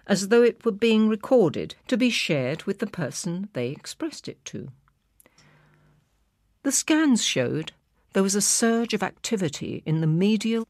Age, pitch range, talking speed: 50-69, 155-220 Hz, 155 wpm